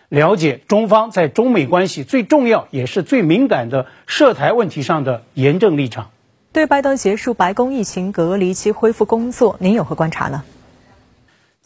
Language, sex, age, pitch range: Chinese, male, 50-69, 155-215 Hz